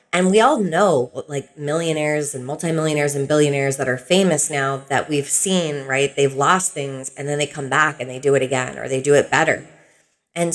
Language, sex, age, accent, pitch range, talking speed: English, female, 30-49, American, 145-185 Hz, 210 wpm